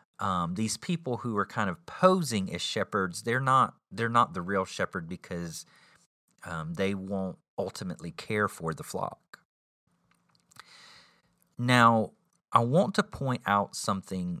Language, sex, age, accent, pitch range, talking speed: English, male, 40-59, American, 85-125 Hz, 140 wpm